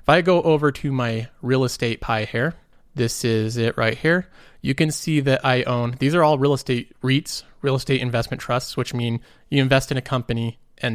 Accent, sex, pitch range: American, male, 120-145 Hz